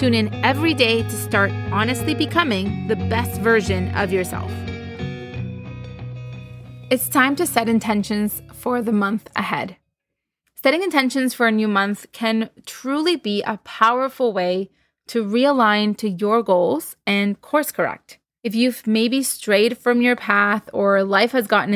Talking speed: 145 wpm